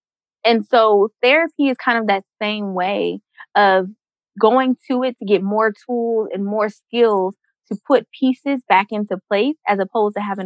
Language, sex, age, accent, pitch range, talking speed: English, female, 20-39, American, 195-255 Hz, 170 wpm